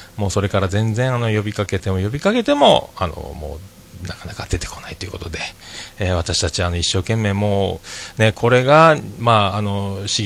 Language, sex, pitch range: Japanese, male, 90-110 Hz